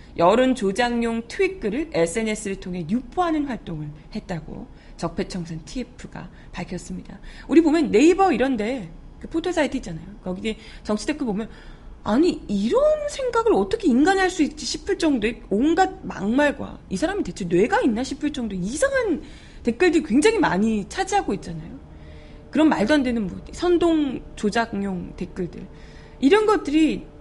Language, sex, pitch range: Korean, female, 190-315 Hz